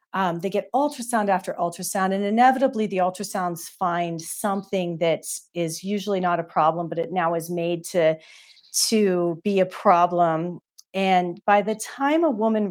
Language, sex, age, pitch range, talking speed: English, female, 40-59, 170-210 Hz, 160 wpm